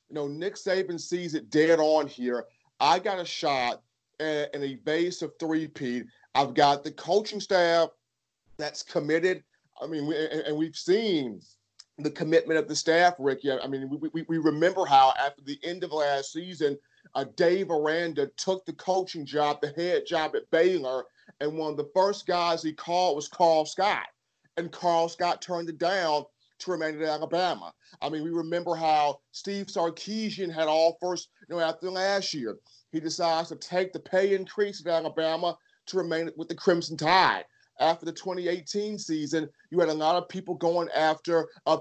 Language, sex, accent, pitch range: English, male, American, 155-185 Hz